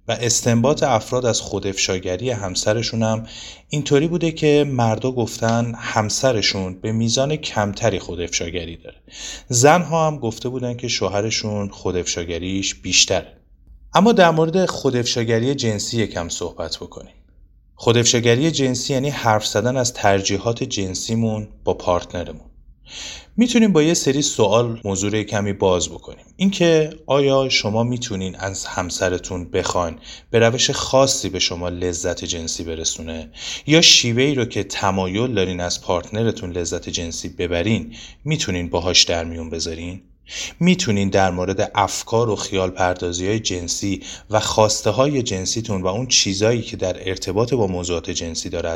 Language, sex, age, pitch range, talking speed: Persian, male, 30-49, 90-125 Hz, 130 wpm